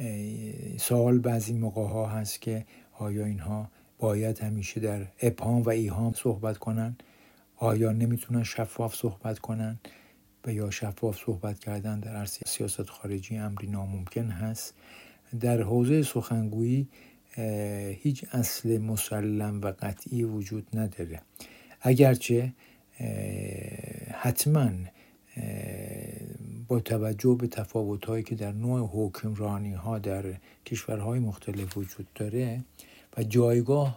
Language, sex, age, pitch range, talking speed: Persian, male, 60-79, 105-120 Hz, 110 wpm